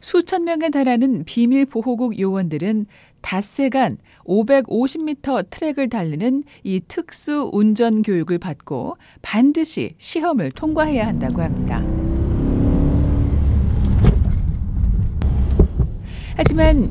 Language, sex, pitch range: Korean, female, 175-280 Hz